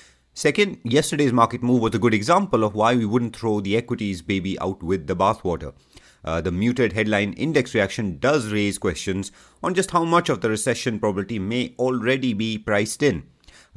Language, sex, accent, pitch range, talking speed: English, male, Indian, 90-120 Hz, 190 wpm